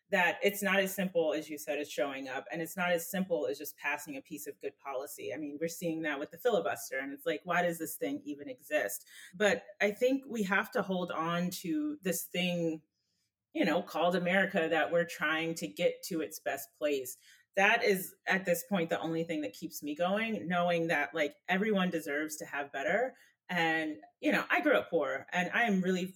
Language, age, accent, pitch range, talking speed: English, 30-49, American, 150-195 Hz, 220 wpm